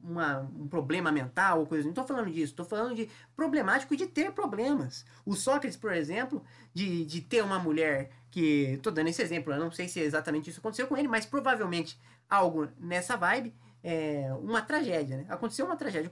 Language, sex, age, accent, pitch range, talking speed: Portuguese, male, 20-39, Brazilian, 135-220 Hz, 195 wpm